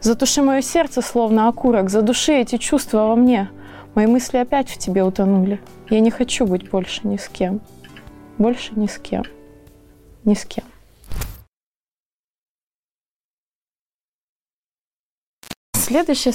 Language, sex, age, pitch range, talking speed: Russian, female, 20-39, 210-265 Hz, 115 wpm